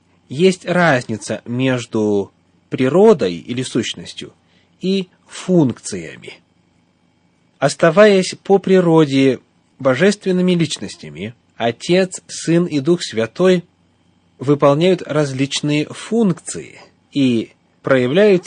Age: 30-49